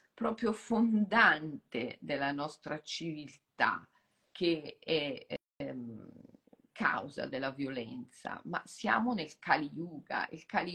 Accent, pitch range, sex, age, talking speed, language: native, 150-195 Hz, female, 40-59, 100 wpm, Italian